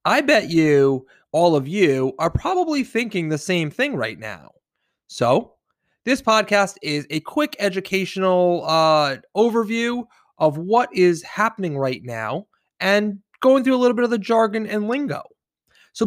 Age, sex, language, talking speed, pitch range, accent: 20-39, male, English, 155 wpm, 130-210 Hz, American